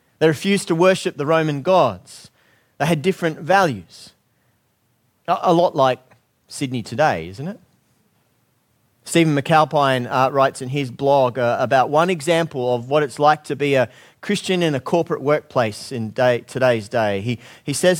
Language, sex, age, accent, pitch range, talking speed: English, male, 30-49, Australian, 125-175 Hz, 155 wpm